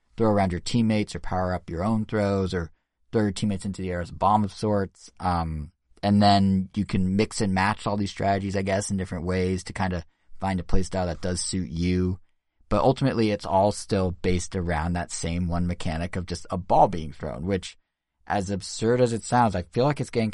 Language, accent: English, American